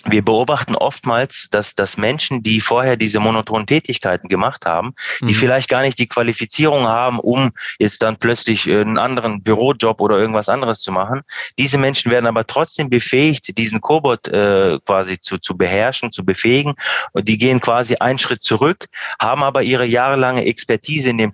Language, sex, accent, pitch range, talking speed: German, male, German, 100-125 Hz, 170 wpm